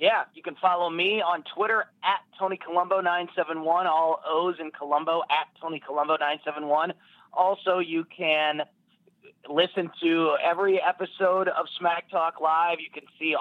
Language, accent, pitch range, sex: English, American, 145-180 Hz, male